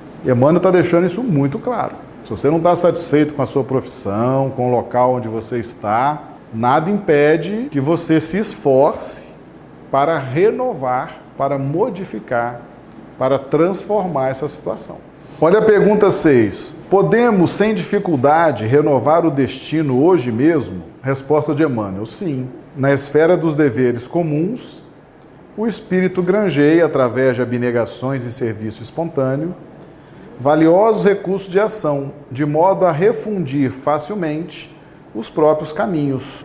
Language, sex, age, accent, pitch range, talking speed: Portuguese, male, 40-59, Brazilian, 135-180 Hz, 130 wpm